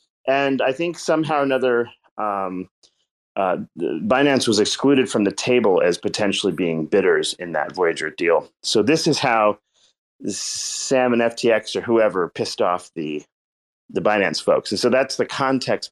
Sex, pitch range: male, 95-130 Hz